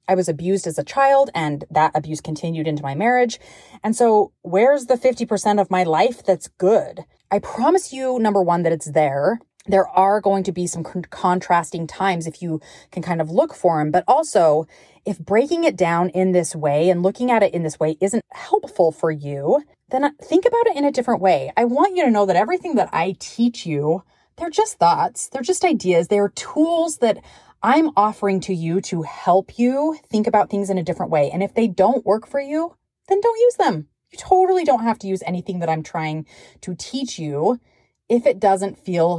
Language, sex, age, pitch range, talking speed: English, female, 30-49, 175-245 Hz, 210 wpm